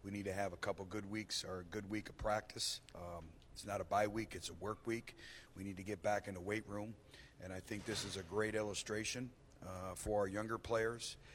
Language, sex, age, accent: English, male, 40-59, American